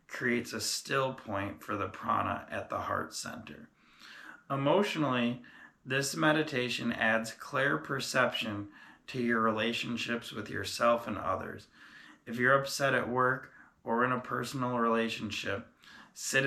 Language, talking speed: English, 130 wpm